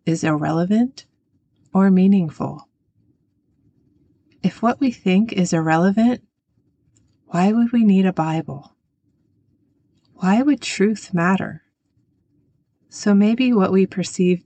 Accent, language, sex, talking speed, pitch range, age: American, English, female, 105 wpm, 155-190 Hz, 30-49